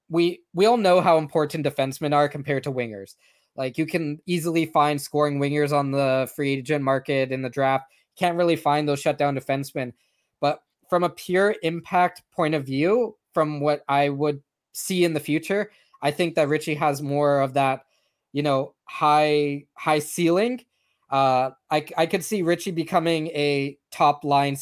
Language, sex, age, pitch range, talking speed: English, male, 20-39, 140-165 Hz, 170 wpm